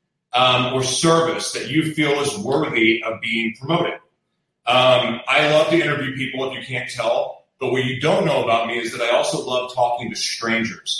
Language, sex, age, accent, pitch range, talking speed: English, male, 30-49, American, 120-160 Hz, 195 wpm